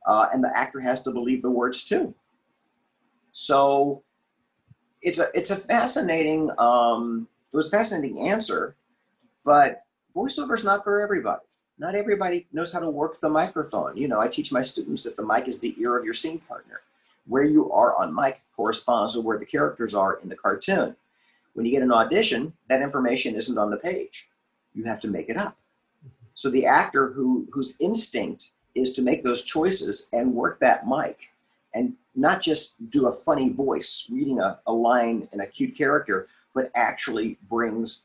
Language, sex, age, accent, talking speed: English, male, 50-69, American, 185 wpm